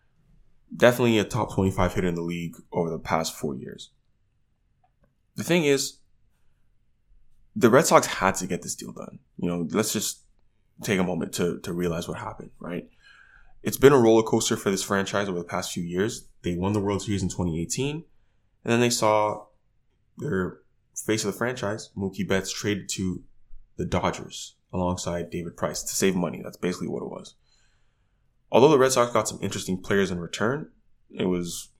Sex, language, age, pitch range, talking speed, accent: male, English, 20-39, 90-110 Hz, 180 wpm, American